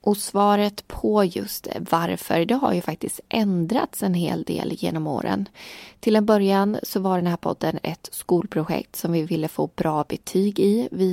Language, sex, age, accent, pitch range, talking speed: Swedish, female, 20-39, native, 165-205 Hz, 180 wpm